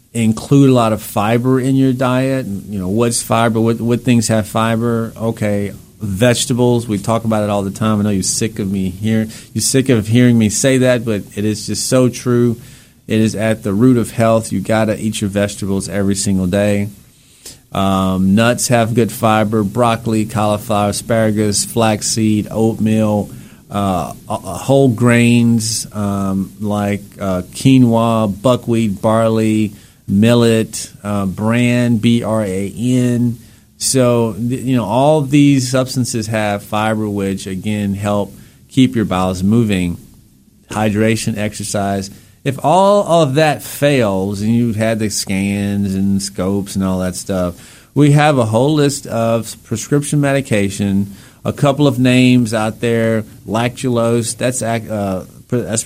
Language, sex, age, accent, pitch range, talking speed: English, male, 40-59, American, 105-120 Hz, 145 wpm